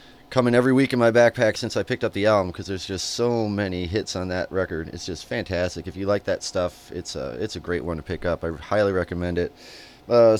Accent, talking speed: American, 240 wpm